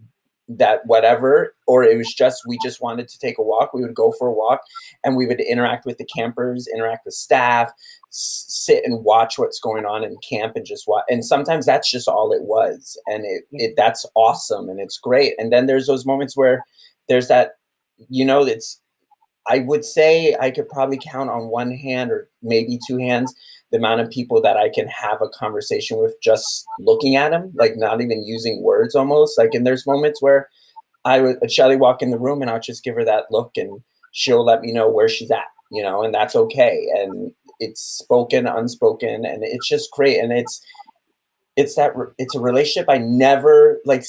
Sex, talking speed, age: male, 205 wpm, 30-49